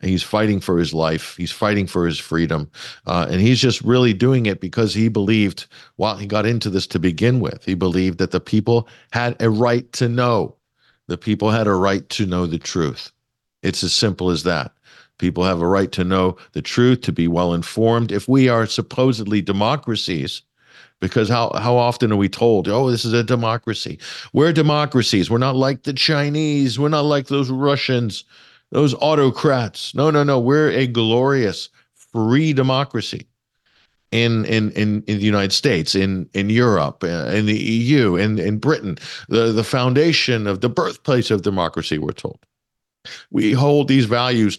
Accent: American